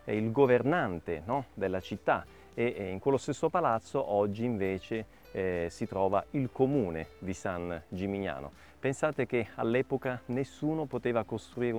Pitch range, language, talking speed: 100-150 Hz, Italian, 125 wpm